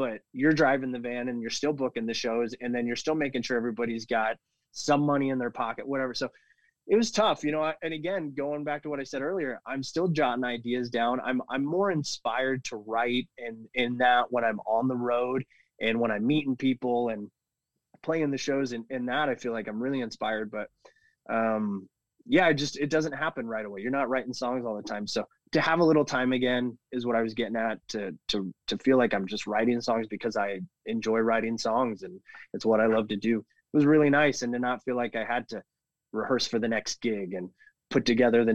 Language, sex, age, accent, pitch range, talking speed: English, male, 20-39, American, 115-145 Hz, 235 wpm